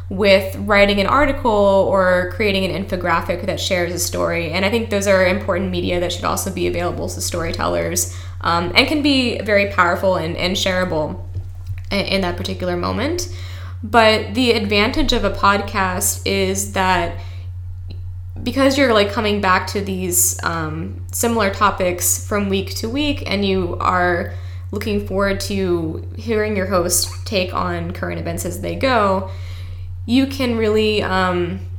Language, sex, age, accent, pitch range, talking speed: English, female, 20-39, American, 90-105 Hz, 155 wpm